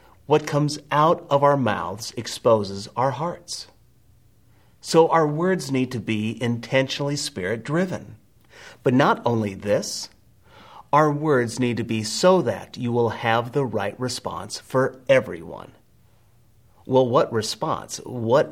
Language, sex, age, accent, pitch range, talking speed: English, male, 40-59, American, 110-150 Hz, 130 wpm